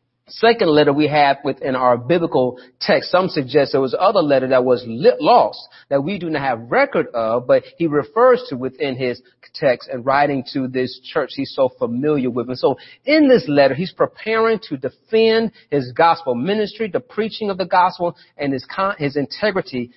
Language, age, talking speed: English, 40-59, 185 wpm